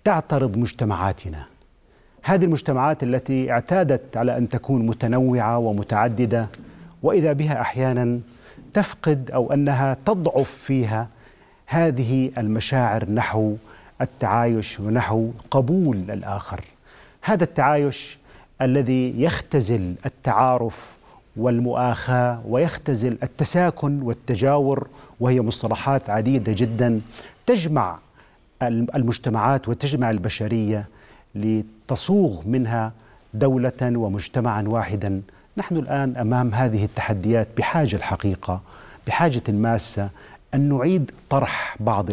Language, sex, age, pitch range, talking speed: Arabic, male, 40-59, 110-135 Hz, 85 wpm